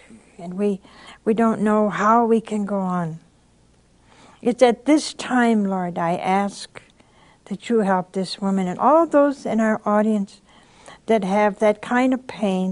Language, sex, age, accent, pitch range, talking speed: English, female, 60-79, American, 175-230 Hz, 160 wpm